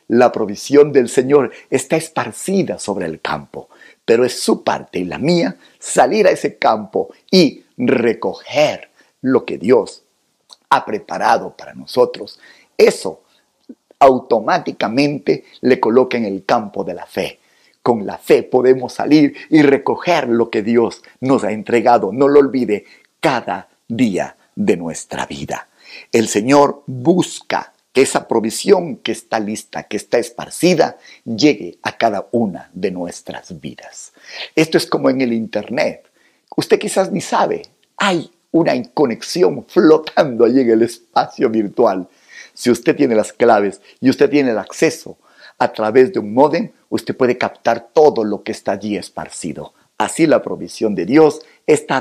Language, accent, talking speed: Spanish, Mexican, 150 wpm